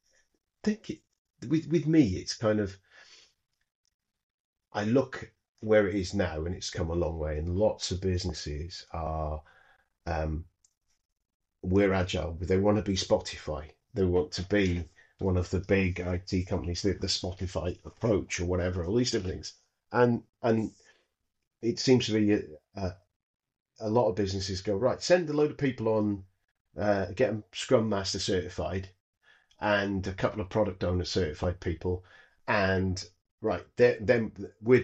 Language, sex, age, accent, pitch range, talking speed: English, male, 40-59, British, 90-105 Hz, 160 wpm